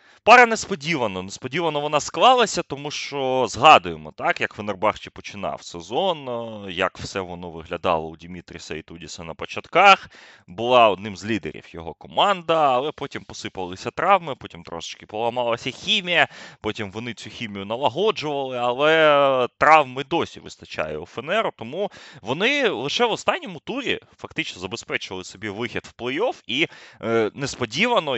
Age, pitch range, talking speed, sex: 20-39, 100-155 Hz, 130 wpm, male